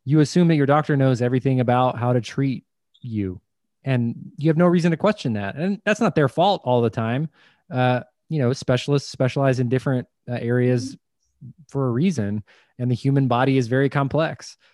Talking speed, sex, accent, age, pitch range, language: 190 wpm, male, American, 20-39, 120-155 Hz, English